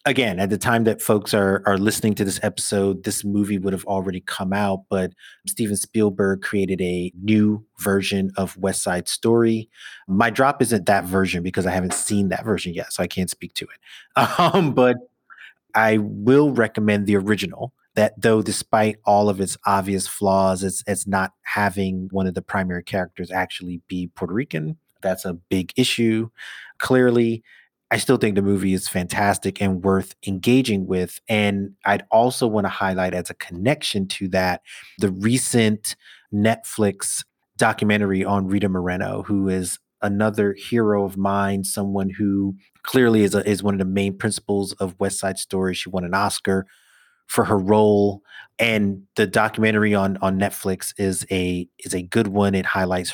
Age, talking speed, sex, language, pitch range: 30-49, 170 wpm, male, English, 95-105 Hz